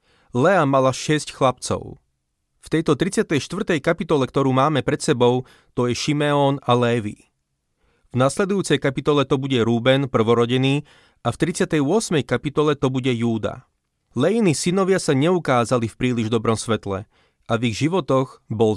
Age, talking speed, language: 30-49, 140 wpm, Slovak